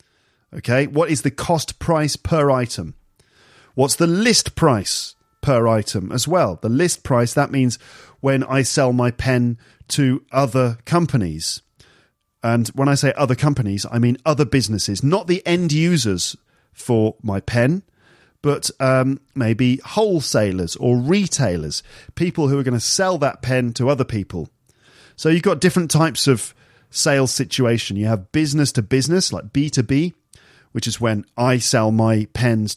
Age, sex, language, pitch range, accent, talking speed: 40-59, male, English, 120-150 Hz, British, 155 wpm